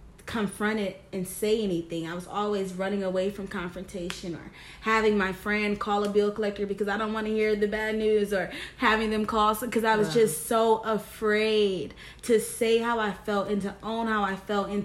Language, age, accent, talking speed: English, 20-39, American, 205 wpm